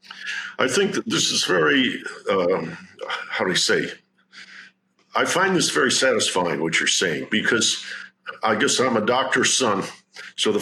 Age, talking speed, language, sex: 50-69, 160 wpm, English, male